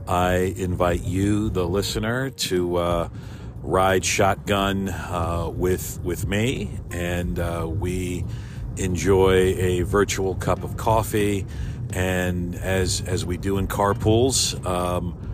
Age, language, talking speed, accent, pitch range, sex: 50-69, English, 115 wpm, American, 90-110 Hz, male